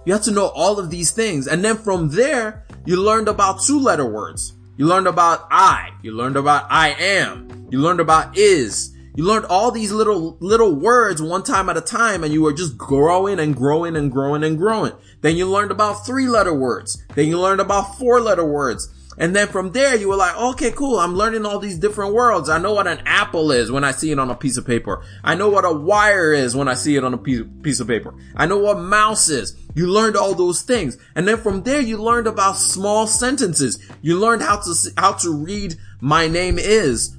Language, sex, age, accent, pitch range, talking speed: English, male, 20-39, American, 145-210 Hz, 230 wpm